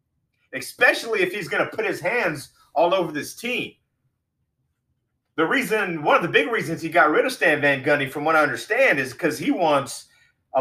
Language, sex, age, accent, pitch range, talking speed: English, male, 30-49, American, 130-170 Hz, 200 wpm